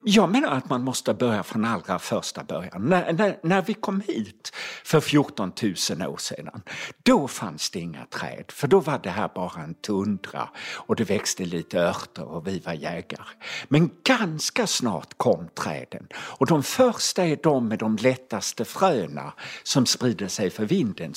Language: Swedish